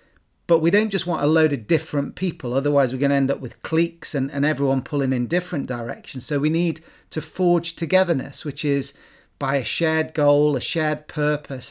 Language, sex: English, male